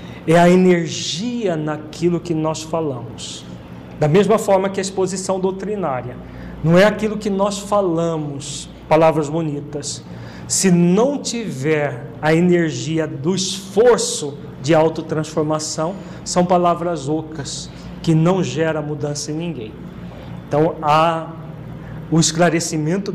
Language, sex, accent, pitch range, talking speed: Portuguese, male, Brazilian, 155-185 Hz, 115 wpm